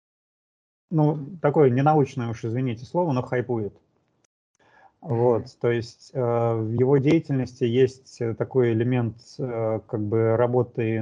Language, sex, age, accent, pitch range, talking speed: Russian, male, 30-49, native, 110-130 Hz, 120 wpm